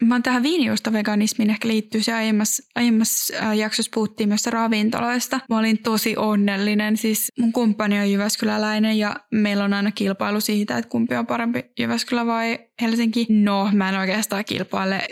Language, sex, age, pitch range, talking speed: Finnish, female, 20-39, 205-235 Hz, 160 wpm